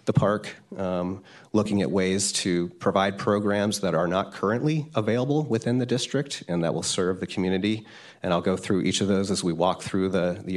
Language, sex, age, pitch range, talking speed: English, male, 40-59, 95-115 Hz, 205 wpm